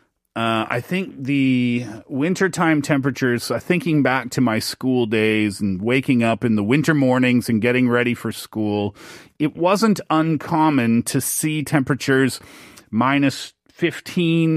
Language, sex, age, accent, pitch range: Korean, male, 30-49, American, 120-165 Hz